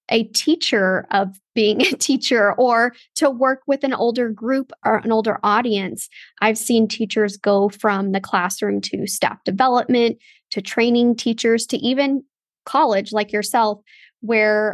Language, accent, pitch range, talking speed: English, American, 205-245 Hz, 145 wpm